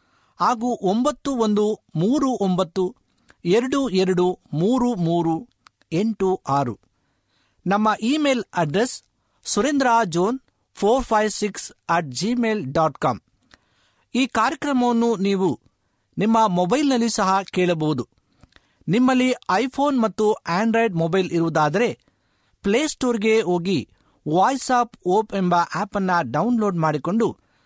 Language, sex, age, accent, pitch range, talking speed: Kannada, male, 60-79, native, 165-230 Hz, 100 wpm